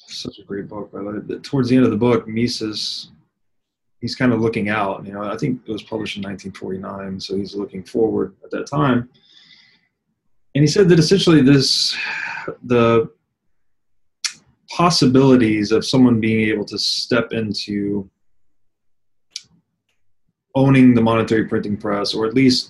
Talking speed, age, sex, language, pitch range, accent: 145 wpm, 30-49, male, English, 105-125 Hz, American